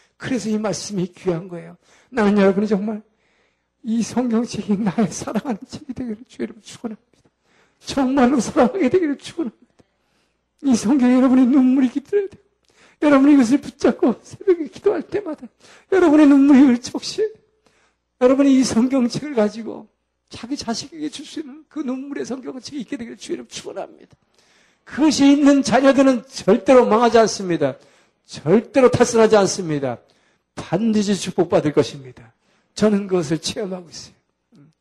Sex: male